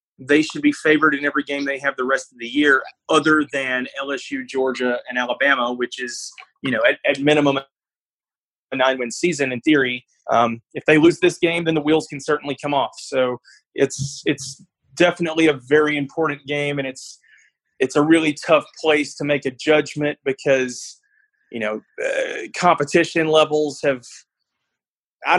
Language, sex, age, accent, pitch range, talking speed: English, male, 30-49, American, 140-165 Hz, 175 wpm